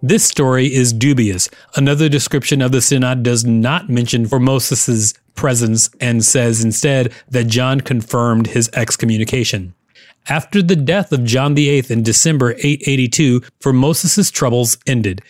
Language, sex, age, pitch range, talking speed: English, male, 30-49, 120-155 Hz, 135 wpm